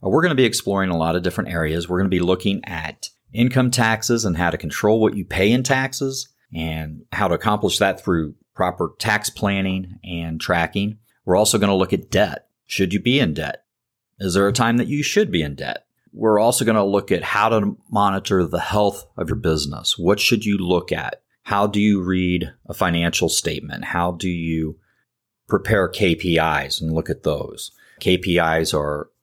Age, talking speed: 30-49, 200 wpm